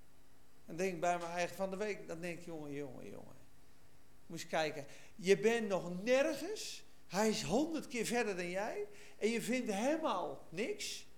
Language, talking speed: Dutch, 185 wpm